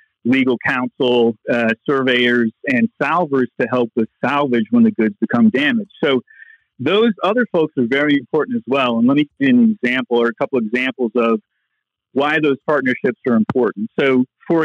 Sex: male